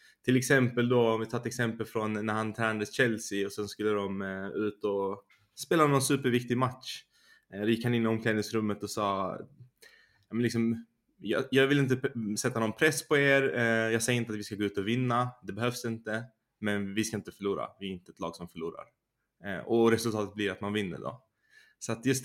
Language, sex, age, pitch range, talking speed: Swedish, male, 20-39, 100-120 Hz, 195 wpm